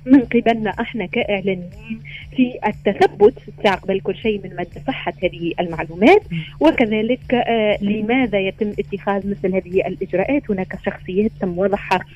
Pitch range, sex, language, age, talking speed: 180-220 Hz, female, Arabic, 30-49, 125 wpm